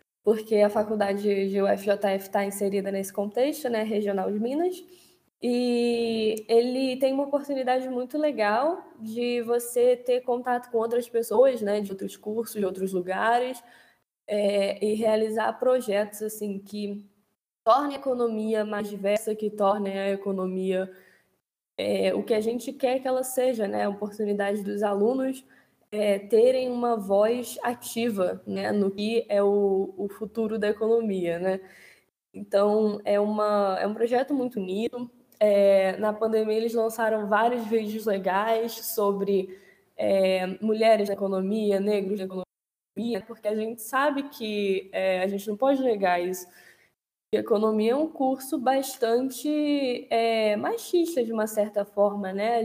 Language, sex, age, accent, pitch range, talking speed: Portuguese, female, 10-29, Brazilian, 200-245 Hz, 145 wpm